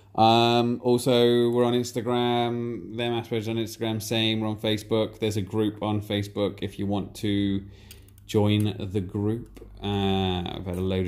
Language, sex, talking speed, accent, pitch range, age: English, male, 155 wpm, British, 95-115 Hz, 20-39